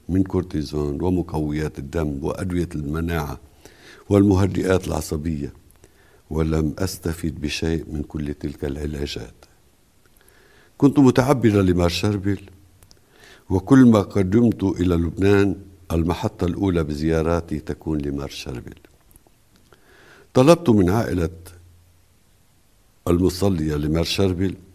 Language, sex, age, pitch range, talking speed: Arabic, male, 60-79, 80-100 Hz, 80 wpm